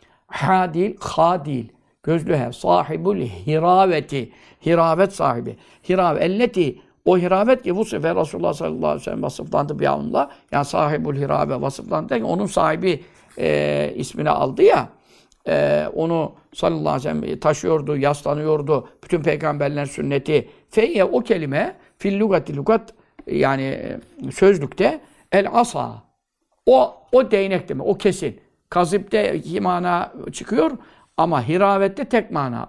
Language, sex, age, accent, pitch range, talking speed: Turkish, male, 60-79, native, 145-195 Hz, 120 wpm